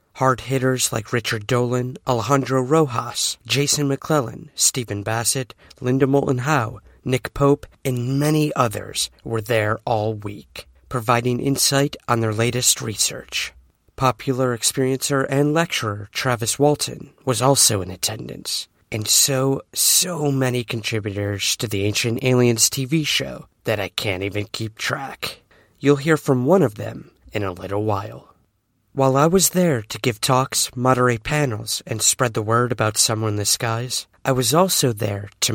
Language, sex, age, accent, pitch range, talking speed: English, male, 30-49, American, 110-140 Hz, 150 wpm